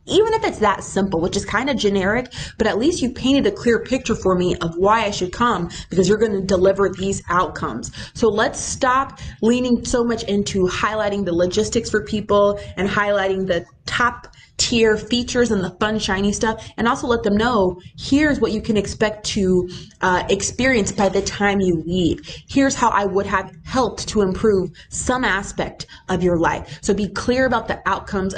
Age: 20-39